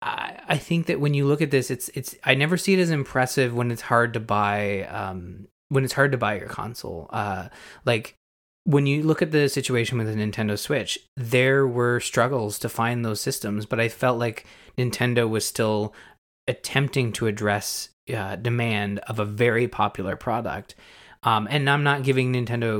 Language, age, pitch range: English, 20-39, 105-130 Hz